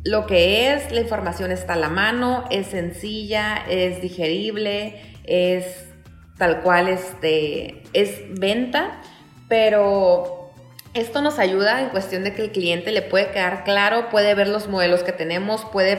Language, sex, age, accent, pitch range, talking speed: Spanish, female, 30-49, Mexican, 175-215 Hz, 145 wpm